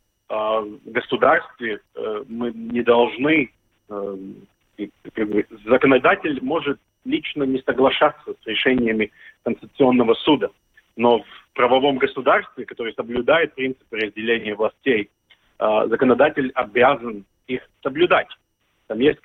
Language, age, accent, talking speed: Russian, 30-49, native, 90 wpm